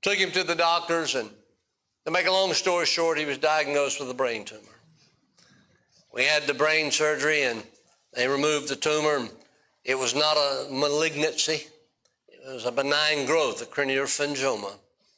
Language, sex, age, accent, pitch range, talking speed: English, male, 60-79, American, 130-155 Hz, 165 wpm